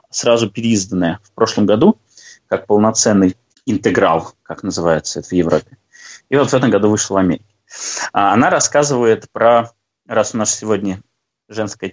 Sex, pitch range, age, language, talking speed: male, 95-120 Hz, 20-39, Russian, 145 wpm